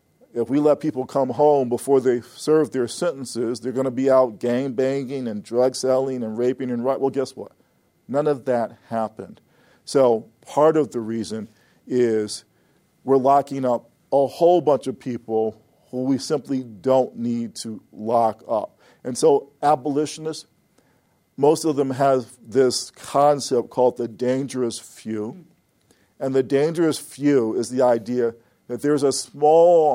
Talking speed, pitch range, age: 150 wpm, 120-145 Hz, 50-69